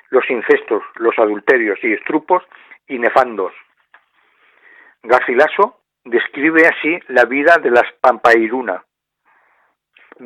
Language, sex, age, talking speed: Spanish, male, 60-79, 100 wpm